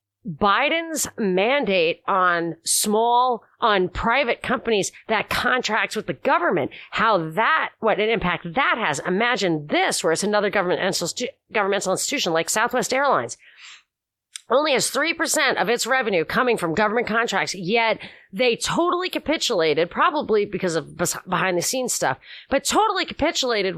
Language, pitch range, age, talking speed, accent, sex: English, 180-250 Hz, 40-59, 135 wpm, American, female